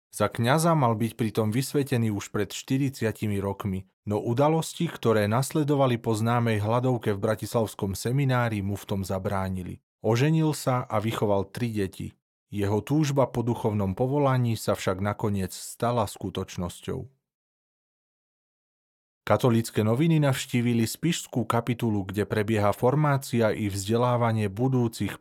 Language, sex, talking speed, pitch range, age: Slovak, male, 120 wpm, 100-125 Hz, 30-49